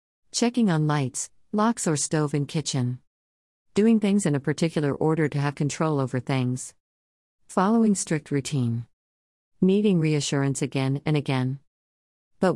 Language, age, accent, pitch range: English, 50-69, American, 130-160 Hz